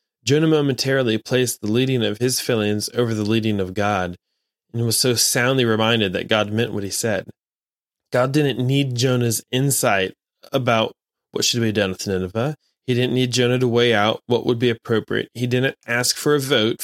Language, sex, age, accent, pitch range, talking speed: English, male, 20-39, American, 110-135 Hz, 190 wpm